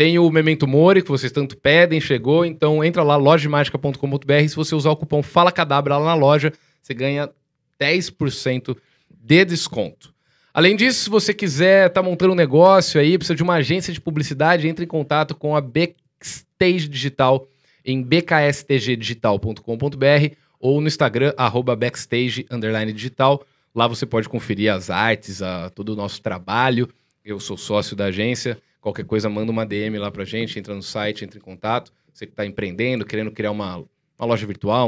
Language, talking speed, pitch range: Portuguese, 170 wpm, 115-170 Hz